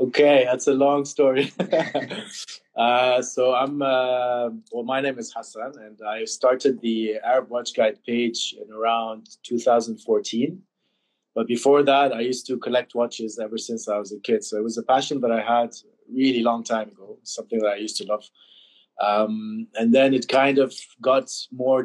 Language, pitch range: English, 115-135 Hz